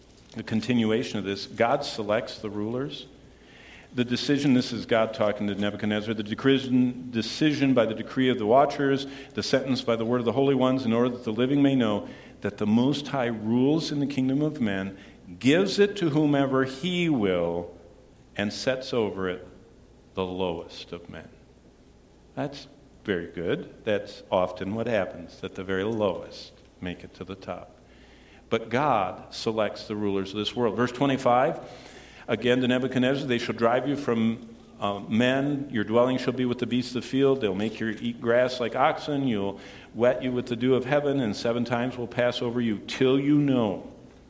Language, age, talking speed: English, 50-69, 185 wpm